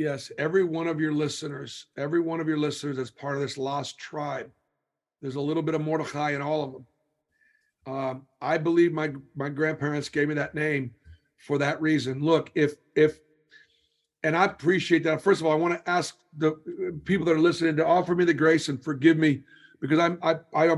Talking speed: 200 wpm